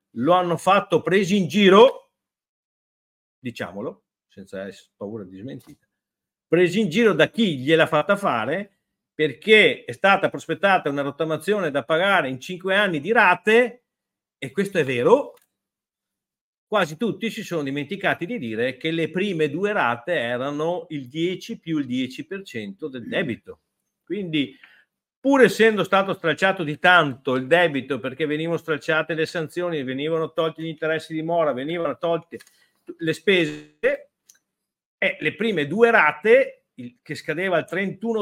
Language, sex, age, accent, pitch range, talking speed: Italian, male, 50-69, native, 155-215 Hz, 140 wpm